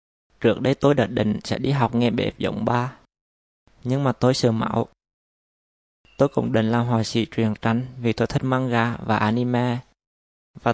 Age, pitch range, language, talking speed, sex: 20-39, 105-125 Hz, Vietnamese, 180 wpm, male